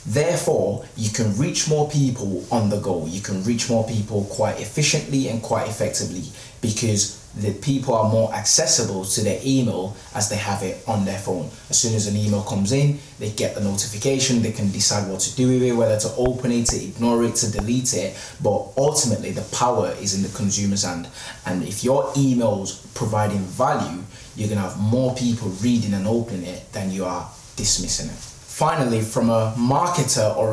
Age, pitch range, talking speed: 20-39, 105-130 Hz, 195 wpm